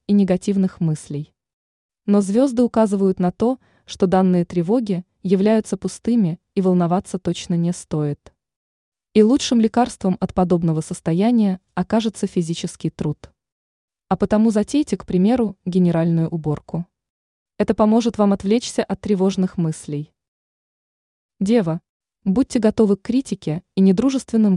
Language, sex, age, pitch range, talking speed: Russian, female, 20-39, 175-220 Hz, 115 wpm